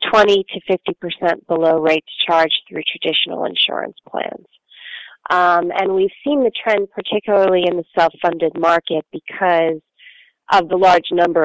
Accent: American